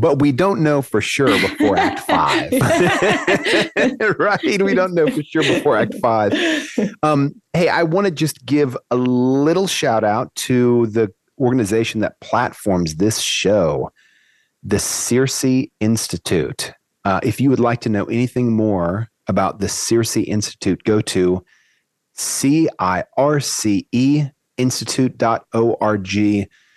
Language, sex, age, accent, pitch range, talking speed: English, male, 30-49, American, 100-135 Hz, 130 wpm